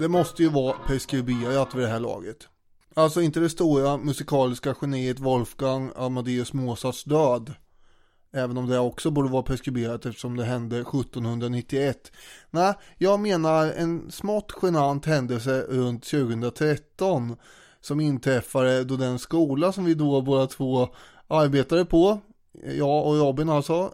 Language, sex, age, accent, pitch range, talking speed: English, male, 20-39, Swedish, 130-160 Hz, 140 wpm